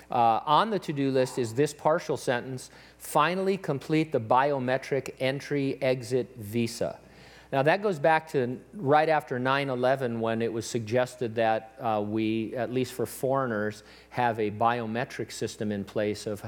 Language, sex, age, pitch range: English, male, 50-69, 105-130 Hz